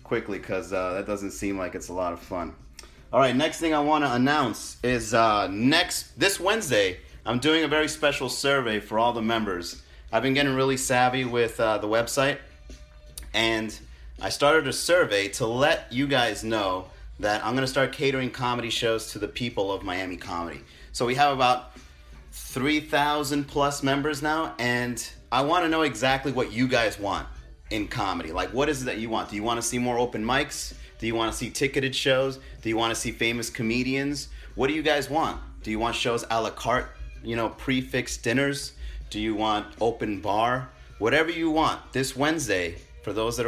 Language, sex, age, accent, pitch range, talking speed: English, male, 30-49, American, 105-135 Hz, 200 wpm